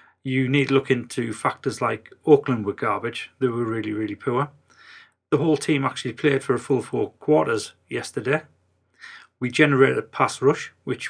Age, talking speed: 30-49, 175 wpm